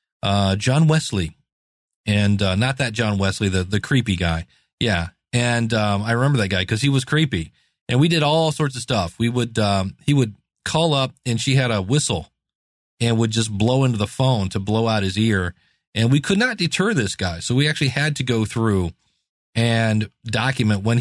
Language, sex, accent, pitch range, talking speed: English, male, American, 105-155 Hz, 205 wpm